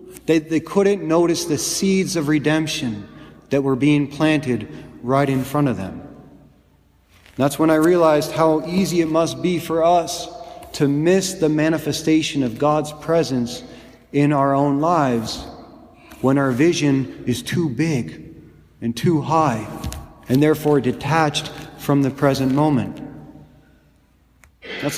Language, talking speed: English, 135 wpm